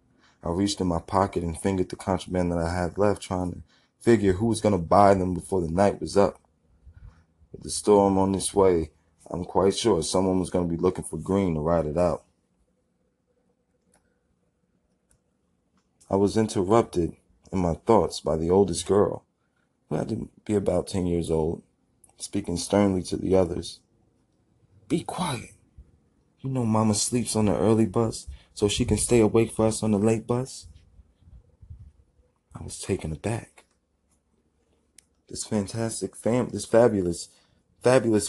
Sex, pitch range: male, 85-115 Hz